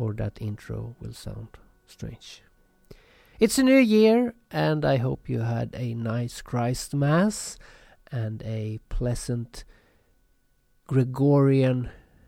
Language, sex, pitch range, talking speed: English, male, 110-135 Hz, 110 wpm